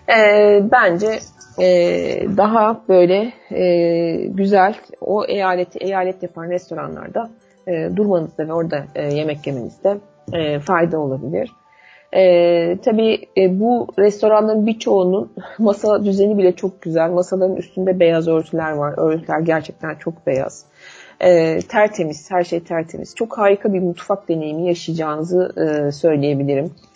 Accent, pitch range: native, 155-200 Hz